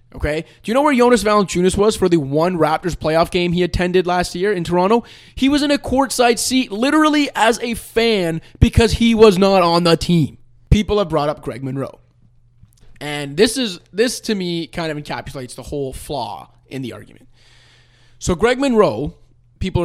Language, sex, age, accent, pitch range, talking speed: English, male, 20-39, American, 130-200 Hz, 185 wpm